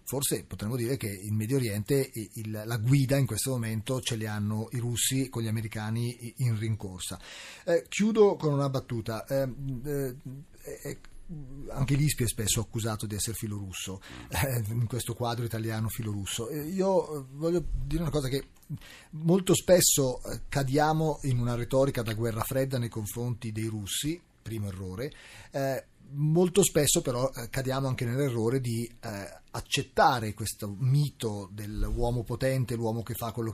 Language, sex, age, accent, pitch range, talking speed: Italian, male, 30-49, native, 110-135 Hz, 150 wpm